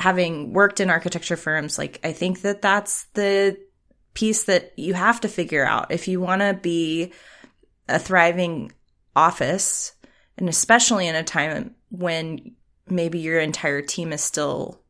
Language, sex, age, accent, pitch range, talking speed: English, female, 20-39, American, 160-200 Hz, 155 wpm